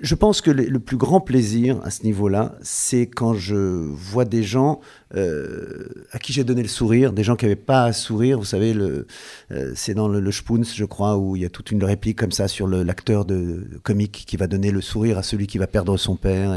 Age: 50-69